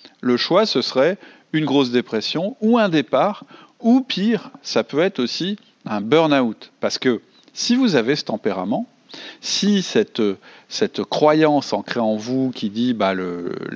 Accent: French